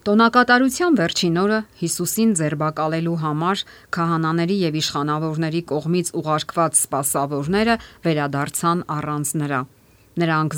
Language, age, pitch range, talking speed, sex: English, 50-69, 140-170 Hz, 95 wpm, female